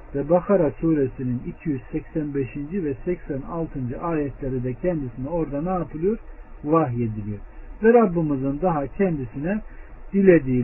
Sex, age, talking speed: male, 60-79, 100 wpm